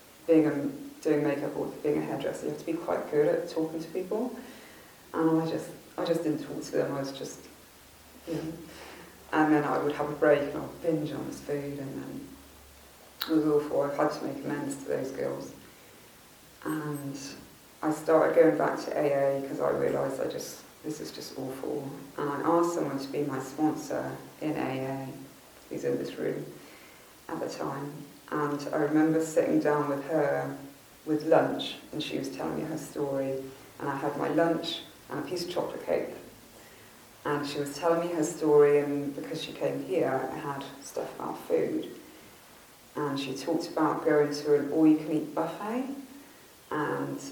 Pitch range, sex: 145-165 Hz, female